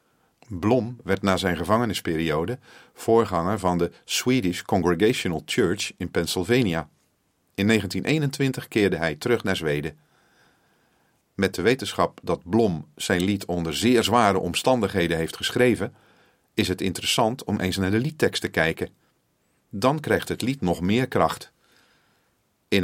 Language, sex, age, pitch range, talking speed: Dutch, male, 40-59, 85-115 Hz, 135 wpm